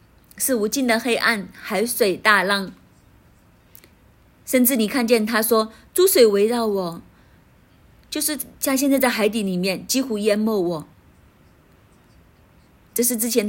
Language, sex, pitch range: Chinese, female, 185-235 Hz